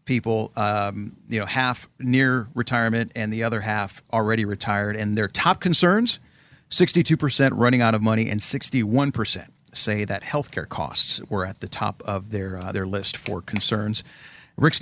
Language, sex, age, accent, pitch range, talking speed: English, male, 40-59, American, 110-135 Hz, 160 wpm